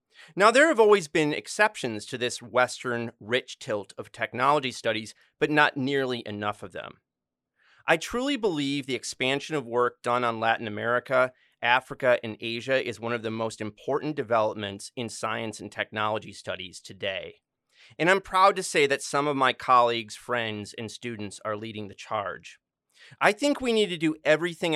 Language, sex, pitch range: English, male, 110-160 Hz